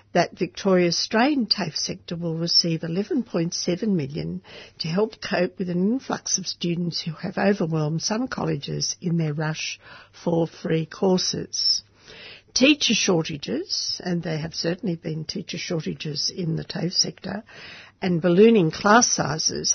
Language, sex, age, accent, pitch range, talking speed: English, female, 60-79, Australian, 165-210 Hz, 135 wpm